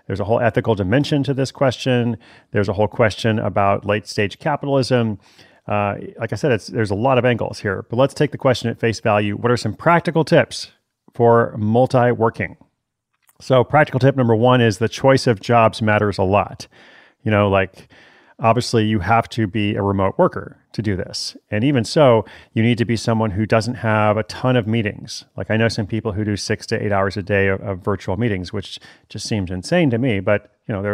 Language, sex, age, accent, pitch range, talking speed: English, male, 30-49, American, 105-125 Hz, 210 wpm